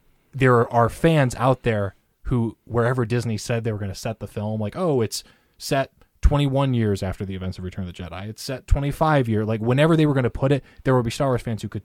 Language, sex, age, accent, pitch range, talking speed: English, male, 20-39, American, 95-120 Hz, 255 wpm